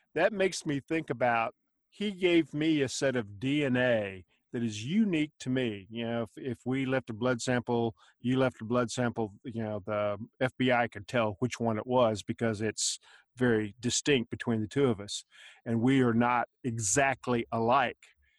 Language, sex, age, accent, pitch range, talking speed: English, male, 50-69, American, 115-135 Hz, 185 wpm